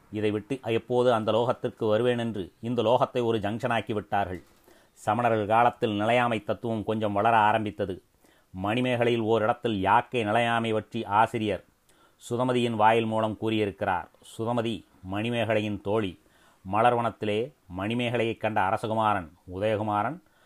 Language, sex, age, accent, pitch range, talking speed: Tamil, male, 30-49, native, 105-115 Hz, 110 wpm